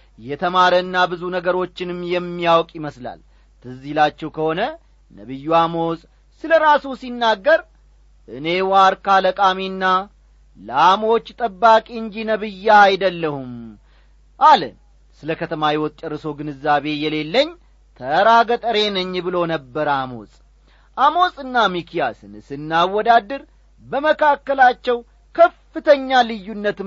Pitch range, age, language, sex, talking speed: 150-225 Hz, 40-59, Amharic, male, 85 wpm